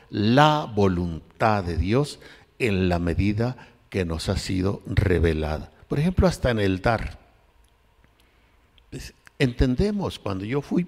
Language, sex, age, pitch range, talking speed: Spanish, male, 60-79, 90-125 Hz, 125 wpm